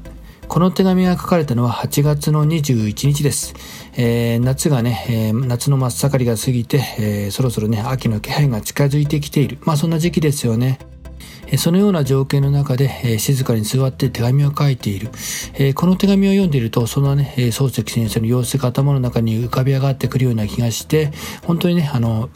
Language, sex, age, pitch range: Japanese, male, 40-59, 120-150 Hz